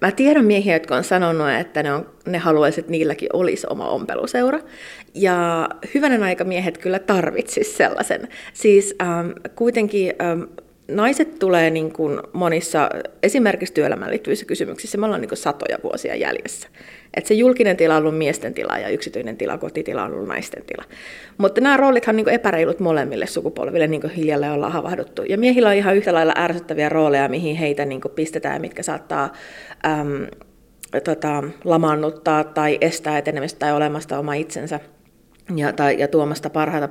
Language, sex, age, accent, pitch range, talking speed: Finnish, female, 30-49, native, 150-195 Hz, 160 wpm